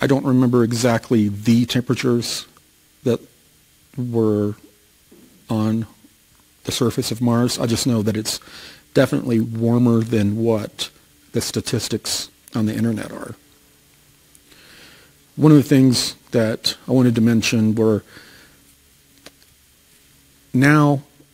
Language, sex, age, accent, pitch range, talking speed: Russian, male, 40-59, American, 110-130 Hz, 110 wpm